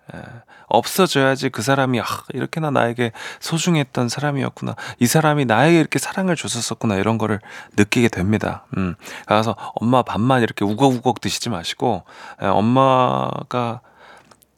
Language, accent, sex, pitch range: Korean, native, male, 115-180 Hz